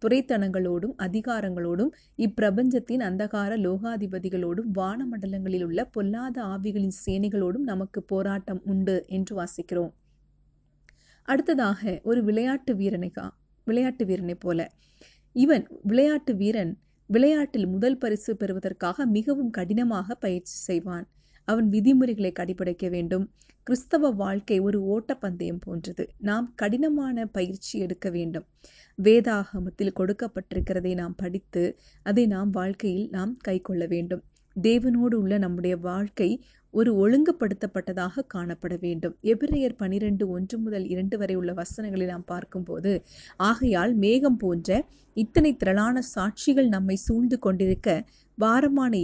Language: Tamil